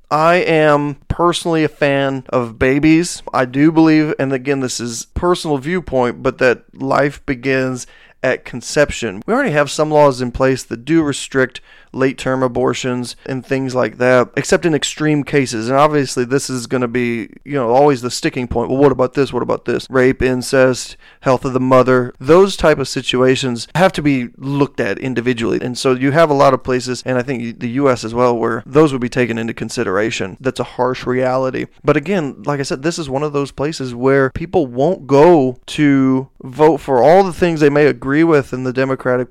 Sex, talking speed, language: male, 200 wpm, English